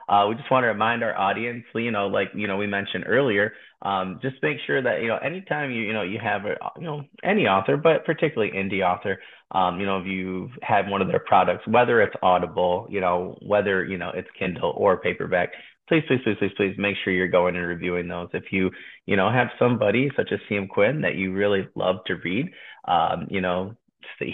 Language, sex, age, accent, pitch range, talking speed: English, male, 30-49, American, 95-115 Hz, 215 wpm